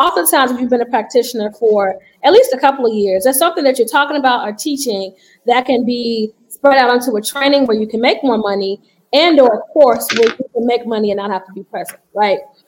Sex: female